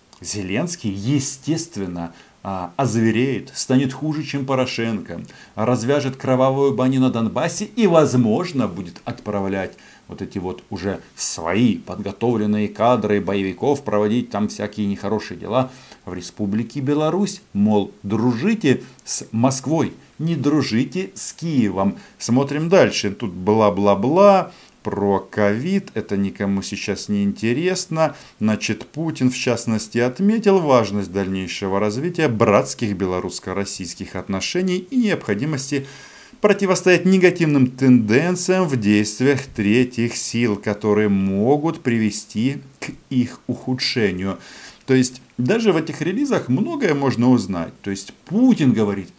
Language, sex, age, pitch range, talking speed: Russian, male, 50-69, 100-145 Hz, 110 wpm